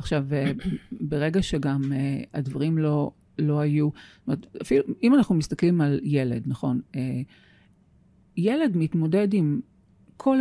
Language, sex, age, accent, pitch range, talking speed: Hebrew, female, 40-59, native, 140-160 Hz, 115 wpm